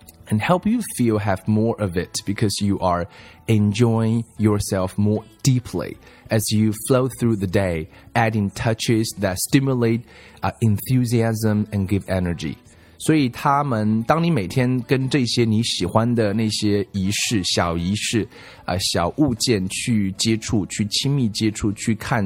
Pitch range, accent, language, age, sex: 95-120 Hz, native, Chinese, 20-39, male